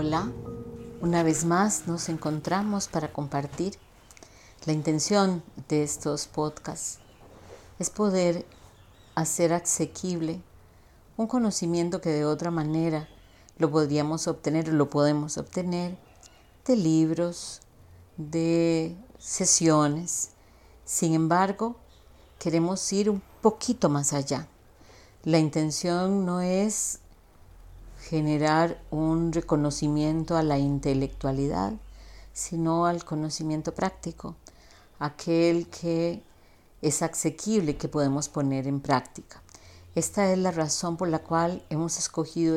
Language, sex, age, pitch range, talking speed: Spanish, female, 40-59, 145-170 Hz, 105 wpm